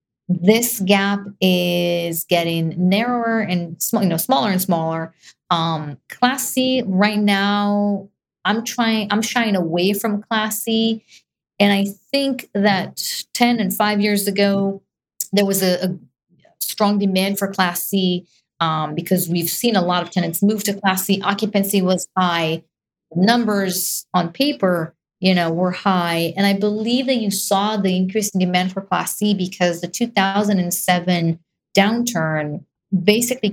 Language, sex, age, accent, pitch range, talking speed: English, female, 30-49, American, 170-205 Hz, 150 wpm